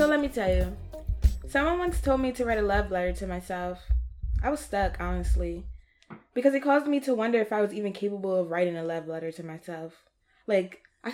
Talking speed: 215 wpm